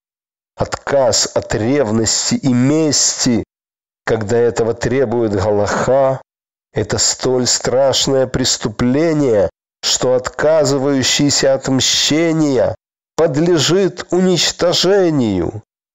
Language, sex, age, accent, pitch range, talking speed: Russian, male, 40-59, native, 120-145 Hz, 70 wpm